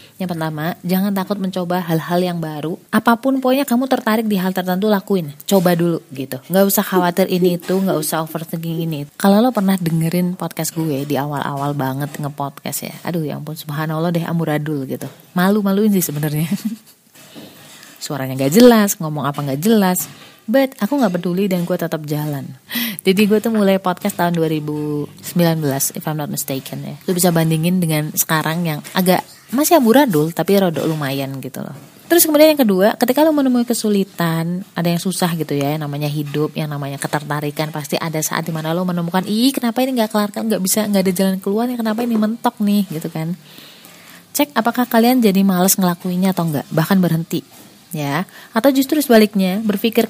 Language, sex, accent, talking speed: Indonesian, female, native, 175 wpm